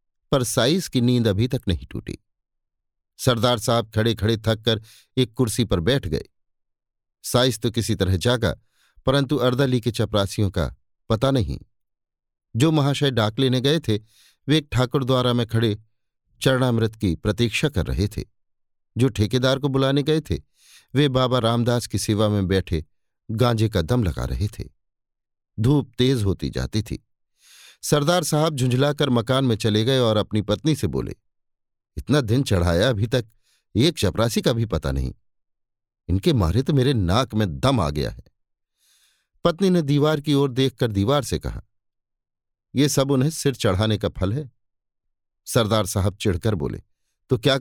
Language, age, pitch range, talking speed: Hindi, 50-69, 105-135 Hz, 160 wpm